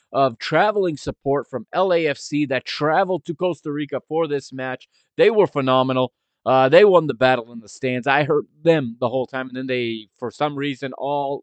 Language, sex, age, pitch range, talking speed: English, male, 30-49, 115-150 Hz, 195 wpm